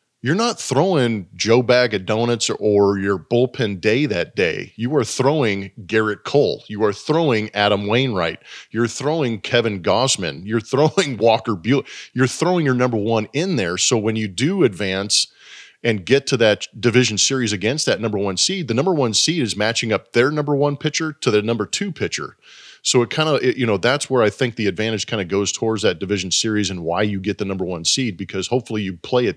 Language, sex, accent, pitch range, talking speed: English, male, American, 105-135 Hz, 210 wpm